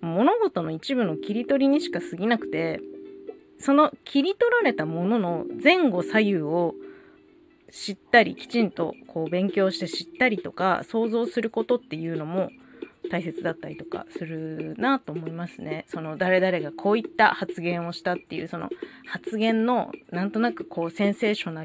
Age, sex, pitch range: 20-39, female, 175-280 Hz